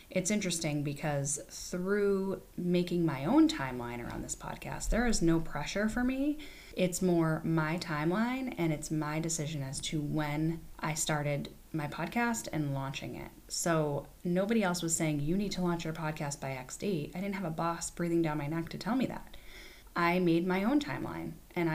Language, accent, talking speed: English, American, 190 wpm